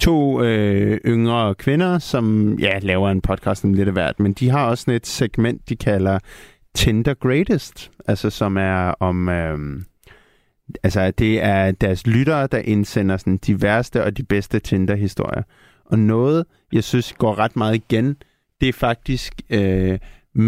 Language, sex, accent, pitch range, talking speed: Danish, male, native, 95-115 Hz, 160 wpm